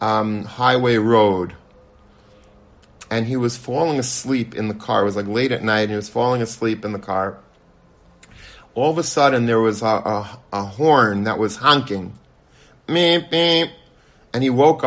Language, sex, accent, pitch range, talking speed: English, male, American, 110-140 Hz, 165 wpm